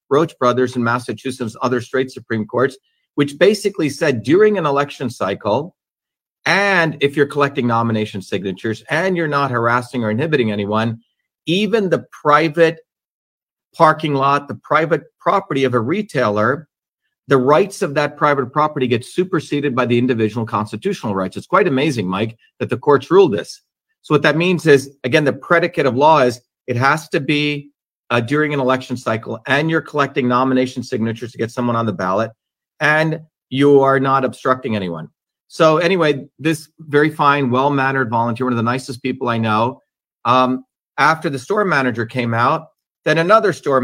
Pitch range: 125-155 Hz